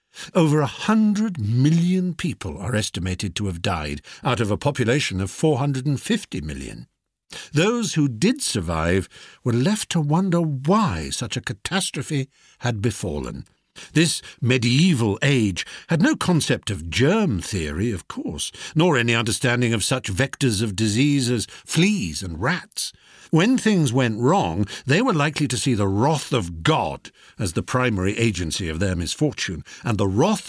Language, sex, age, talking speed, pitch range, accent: English, male, 60-79, 150 wpm, 105-165 Hz, British